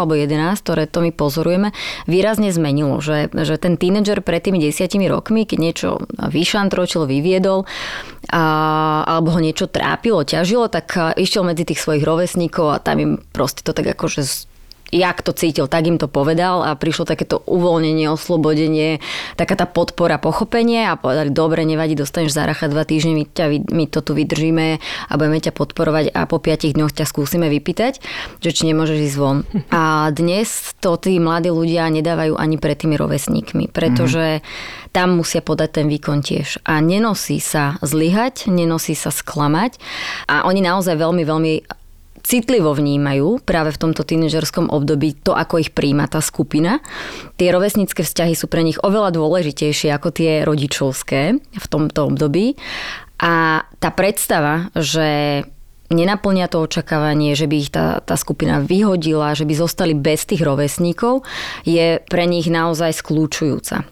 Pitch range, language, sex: 155-180 Hz, Slovak, female